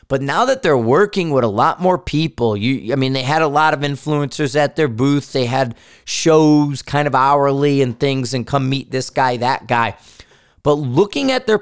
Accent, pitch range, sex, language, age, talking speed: American, 125-155 Hz, male, English, 30-49, 205 wpm